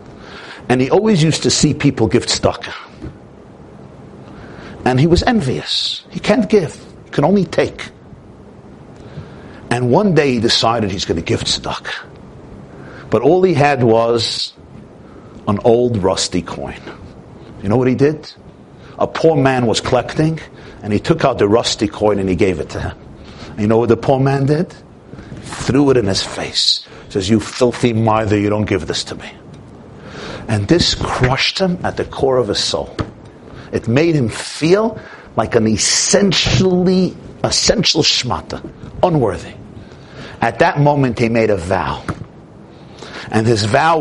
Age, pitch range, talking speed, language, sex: 50-69, 105-145 Hz, 155 wpm, English, male